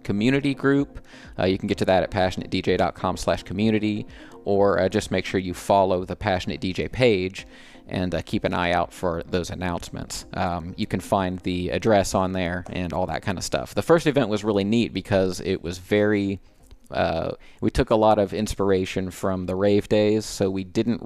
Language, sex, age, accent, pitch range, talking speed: English, male, 30-49, American, 90-105 Hz, 200 wpm